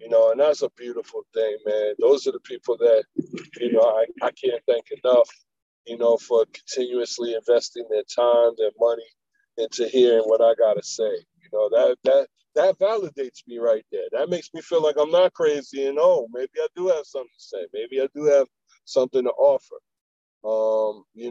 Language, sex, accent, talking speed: English, male, American, 205 wpm